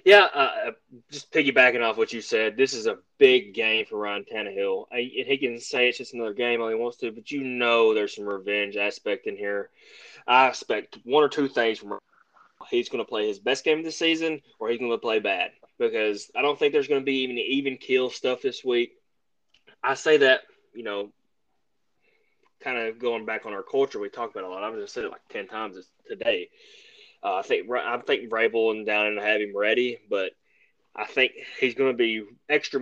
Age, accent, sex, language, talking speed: 20-39, American, male, English, 220 wpm